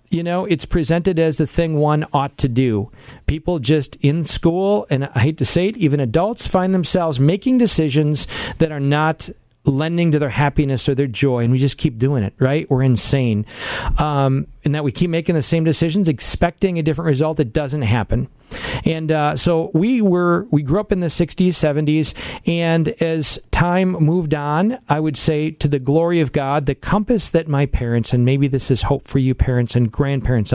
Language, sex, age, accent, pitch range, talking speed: English, male, 40-59, American, 130-165 Hz, 200 wpm